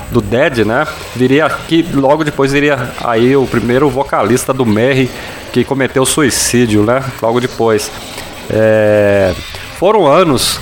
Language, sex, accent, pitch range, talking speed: Portuguese, male, Brazilian, 115-145 Hz, 130 wpm